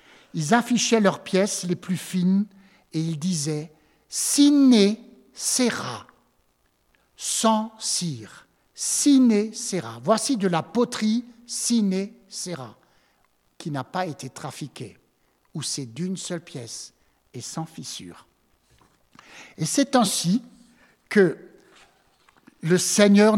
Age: 60-79